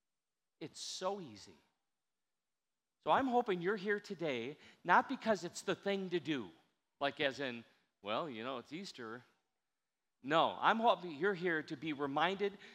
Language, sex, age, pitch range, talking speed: English, male, 40-59, 155-205 Hz, 150 wpm